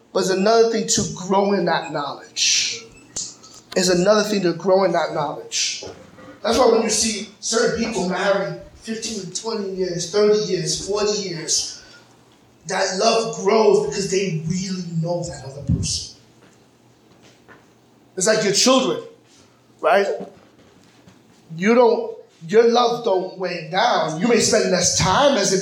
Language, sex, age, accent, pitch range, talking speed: English, male, 30-49, American, 180-225 Hz, 145 wpm